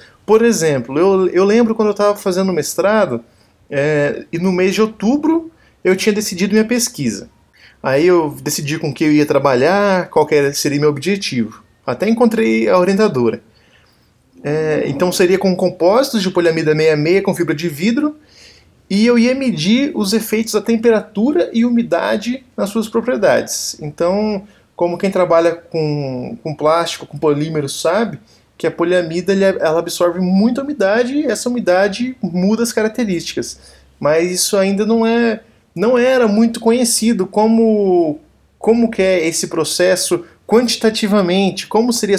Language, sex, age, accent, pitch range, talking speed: Portuguese, male, 20-39, Brazilian, 160-220 Hz, 150 wpm